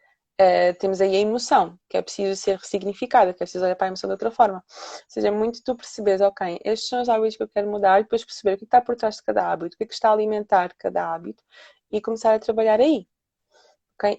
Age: 20-39